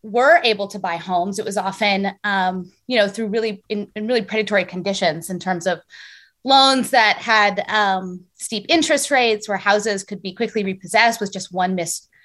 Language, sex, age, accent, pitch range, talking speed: English, female, 20-39, American, 195-230 Hz, 185 wpm